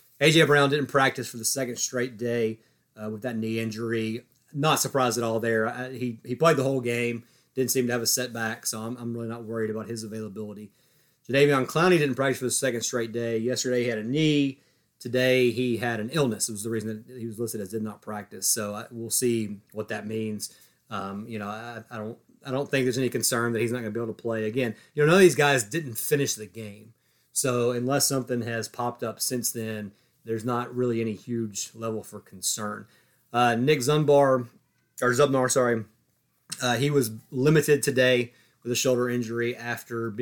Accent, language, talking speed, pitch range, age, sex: American, English, 215 wpm, 110-125 Hz, 30-49, male